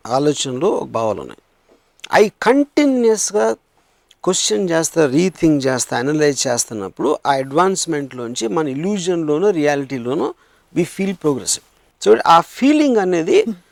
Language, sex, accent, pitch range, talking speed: Telugu, male, native, 145-210 Hz, 105 wpm